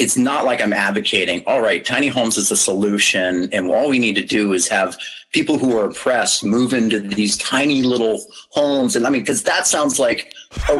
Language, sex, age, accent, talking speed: English, male, 30-49, American, 210 wpm